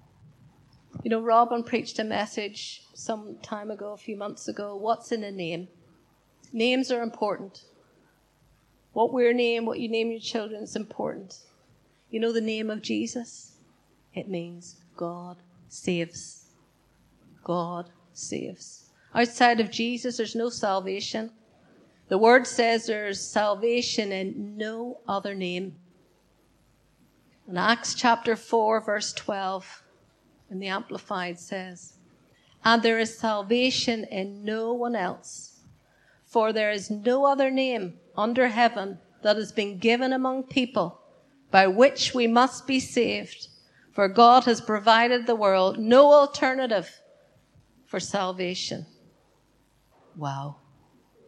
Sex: female